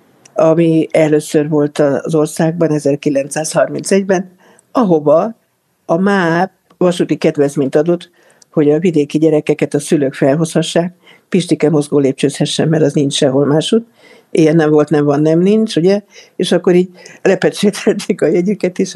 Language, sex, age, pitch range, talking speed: Hungarian, female, 60-79, 150-175 Hz, 135 wpm